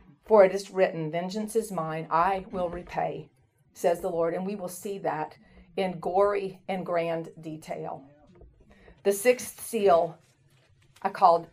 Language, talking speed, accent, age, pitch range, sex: English, 145 wpm, American, 40-59, 185-225 Hz, female